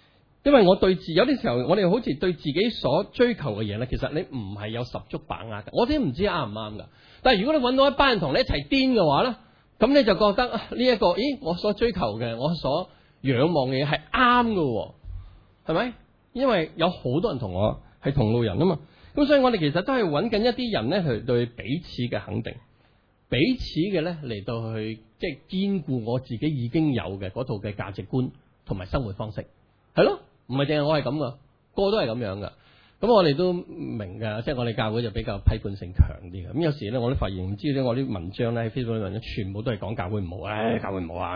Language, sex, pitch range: Chinese, male, 110-170 Hz